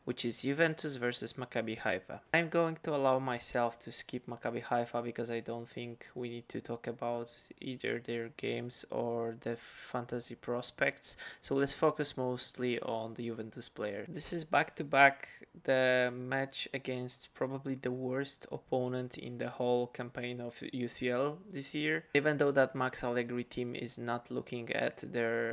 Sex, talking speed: male, 165 wpm